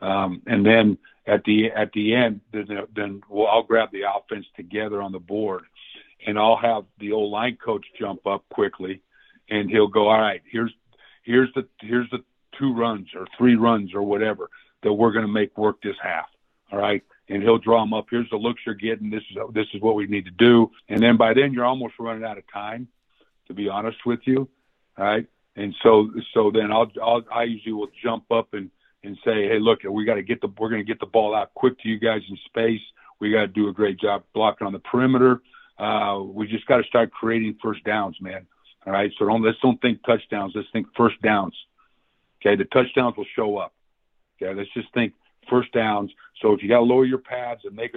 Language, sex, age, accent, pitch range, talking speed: English, male, 50-69, American, 105-120 Hz, 225 wpm